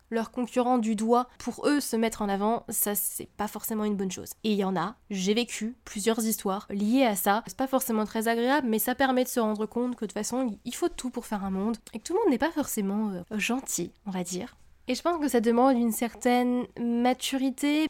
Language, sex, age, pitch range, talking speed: French, female, 20-39, 215-255 Hz, 250 wpm